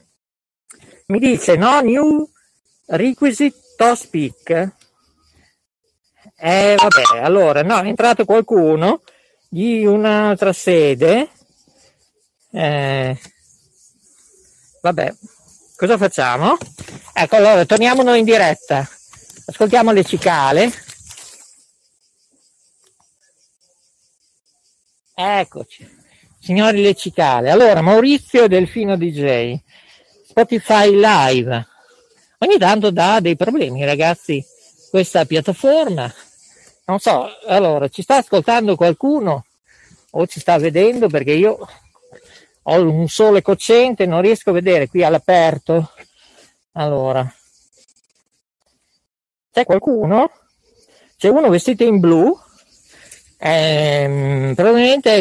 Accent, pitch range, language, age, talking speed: native, 160-235 Hz, Italian, 50-69, 90 wpm